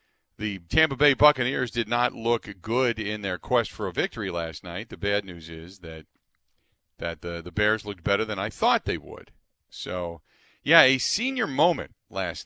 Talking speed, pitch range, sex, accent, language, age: 185 wpm, 90-115 Hz, male, American, English, 40-59